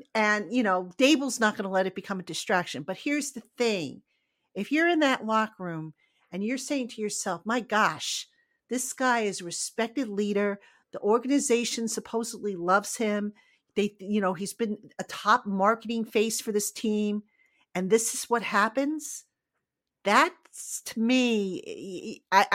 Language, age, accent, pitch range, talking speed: English, 50-69, American, 200-245 Hz, 160 wpm